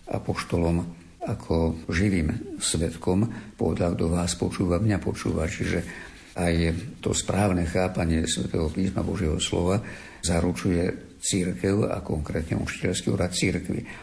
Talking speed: 110 wpm